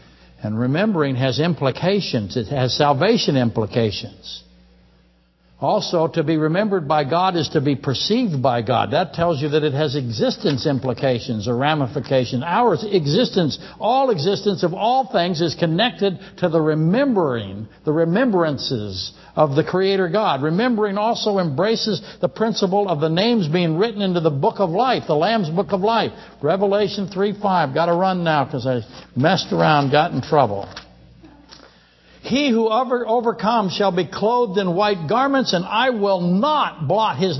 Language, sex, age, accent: English, male, 60-79, American